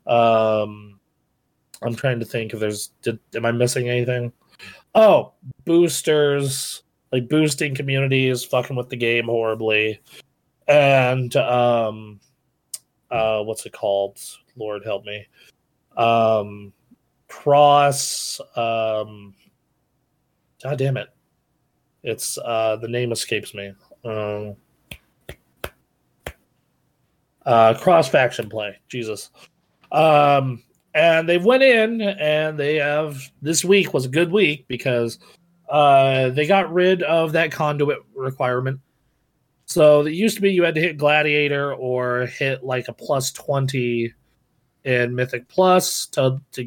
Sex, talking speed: male, 120 wpm